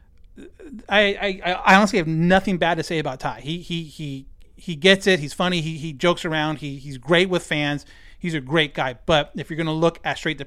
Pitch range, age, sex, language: 140-170 Hz, 30-49, male, English